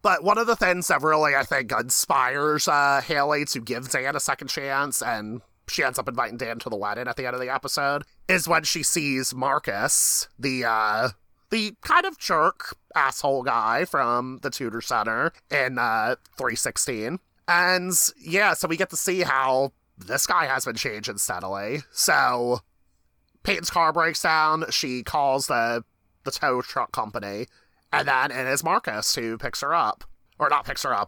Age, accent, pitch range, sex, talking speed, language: 30-49, American, 115-145 Hz, male, 180 wpm, English